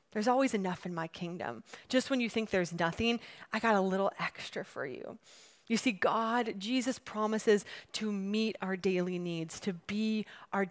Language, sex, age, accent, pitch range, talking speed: English, female, 30-49, American, 195-250 Hz, 180 wpm